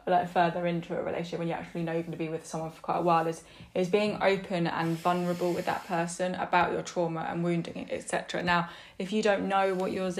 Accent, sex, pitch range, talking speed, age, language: British, female, 175-195 Hz, 240 wpm, 10-29, English